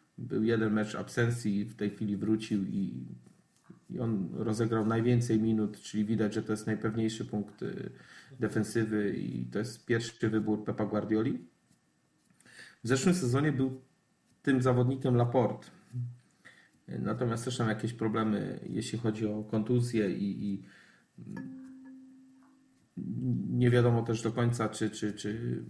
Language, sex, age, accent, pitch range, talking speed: Polish, male, 40-59, native, 110-125 Hz, 130 wpm